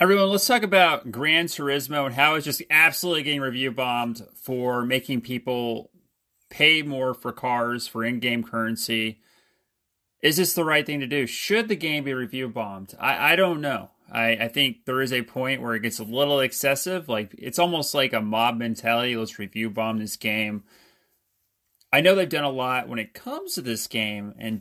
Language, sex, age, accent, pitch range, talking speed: English, male, 30-49, American, 110-140 Hz, 185 wpm